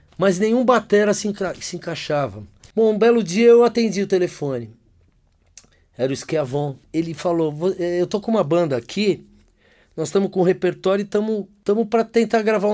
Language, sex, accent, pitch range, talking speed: Portuguese, male, Brazilian, 130-205 Hz, 170 wpm